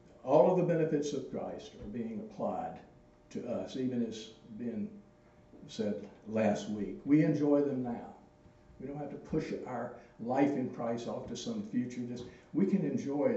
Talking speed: 165 wpm